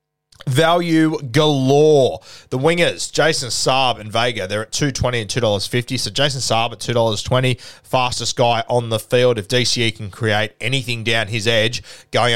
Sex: male